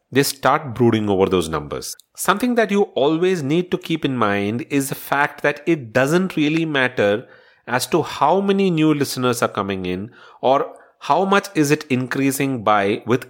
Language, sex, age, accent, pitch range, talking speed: English, male, 30-49, Indian, 110-150 Hz, 180 wpm